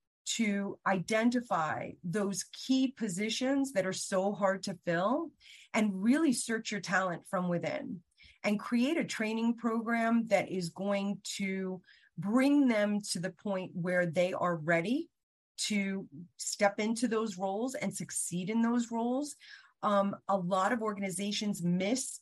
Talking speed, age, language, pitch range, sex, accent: 140 wpm, 30-49, English, 185-235 Hz, female, American